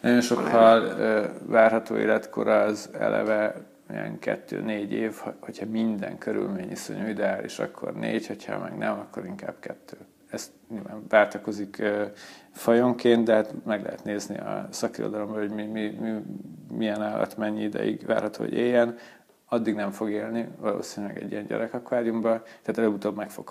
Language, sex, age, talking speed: Hungarian, male, 40-59, 145 wpm